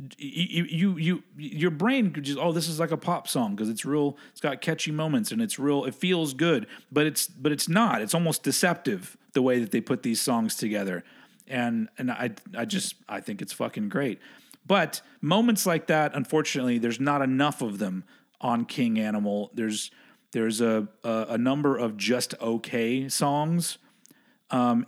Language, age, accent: English, 40-59, American